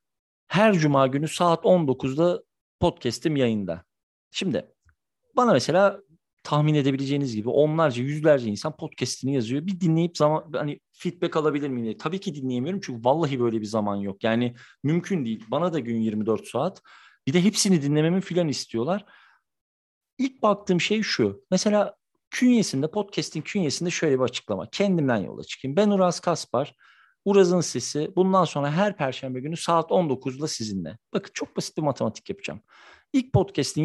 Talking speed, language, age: 150 wpm, Turkish, 50-69